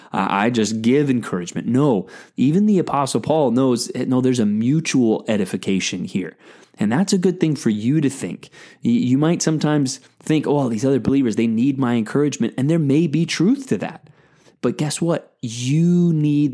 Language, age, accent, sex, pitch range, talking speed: English, 20-39, American, male, 115-150 Hz, 180 wpm